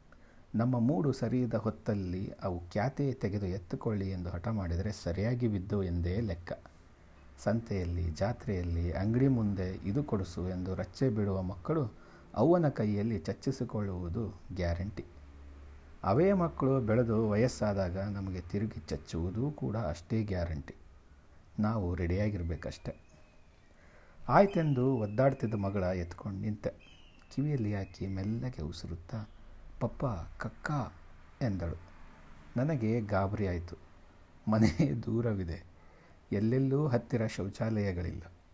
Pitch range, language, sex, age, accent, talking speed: 85-115 Hz, Kannada, male, 60-79, native, 95 wpm